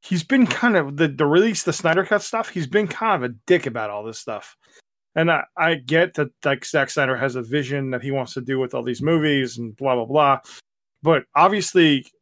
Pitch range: 130-175 Hz